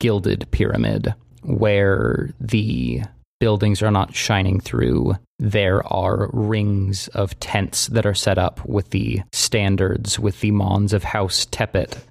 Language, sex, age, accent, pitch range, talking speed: English, male, 20-39, American, 95-110 Hz, 135 wpm